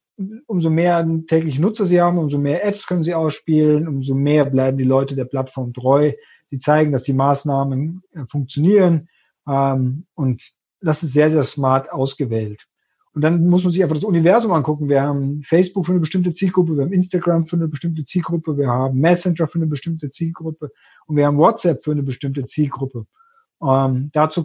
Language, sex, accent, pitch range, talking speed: German, male, German, 135-170 Hz, 175 wpm